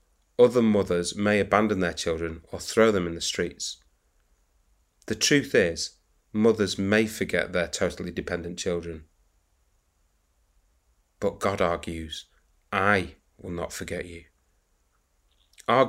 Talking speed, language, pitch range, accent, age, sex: 115 wpm, English, 85-110 Hz, British, 30-49, male